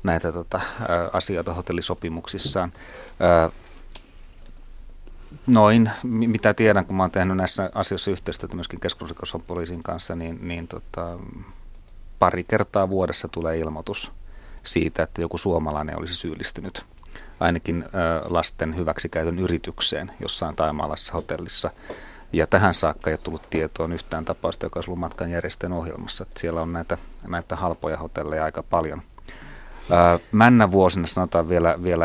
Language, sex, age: Finnish, male, 30-49